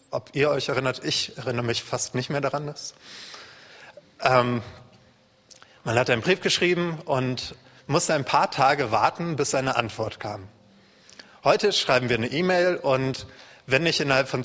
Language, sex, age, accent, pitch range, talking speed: German, male, 30-49, German, 120-145 Hz, 160 wpm